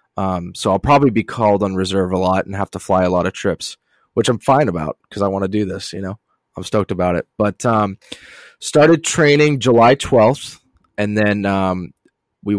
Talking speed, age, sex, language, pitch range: 210 wpm, 20-39, male, English, 100-120 Hz